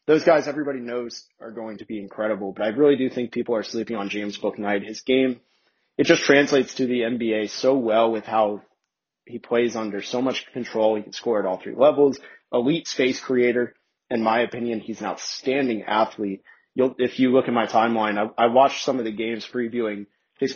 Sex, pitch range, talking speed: male, 110-130 Hz, 205 wpm